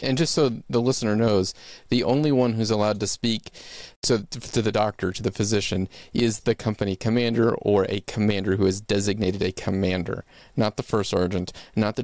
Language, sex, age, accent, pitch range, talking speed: English, male, 30-49, American, 95-110 Hz, 190 wpm